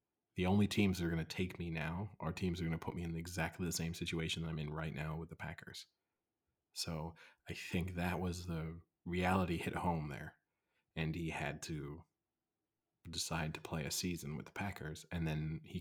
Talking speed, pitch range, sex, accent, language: 215 wpm, 80-90 Hz, male, American, English